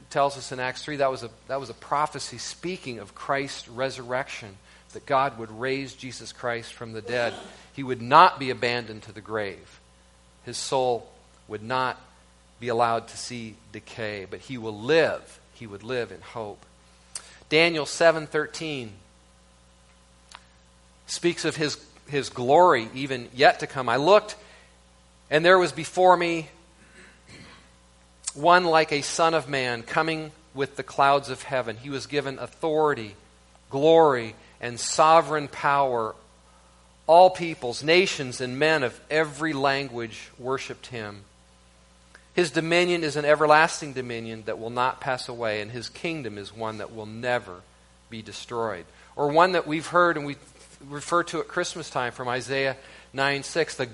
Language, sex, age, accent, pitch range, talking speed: English, male, 40-59, American, 110-150 Hz, 155 wpm